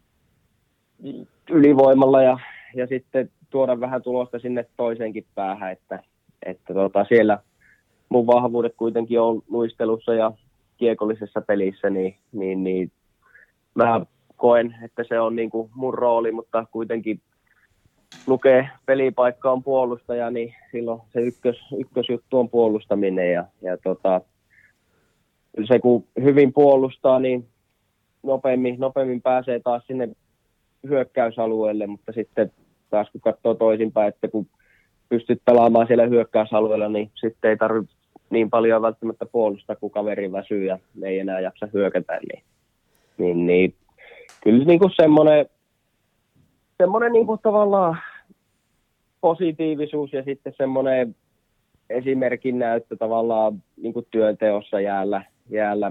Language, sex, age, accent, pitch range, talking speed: Finnish, male, 30-49, native, 105-125 Hz, 115 wpm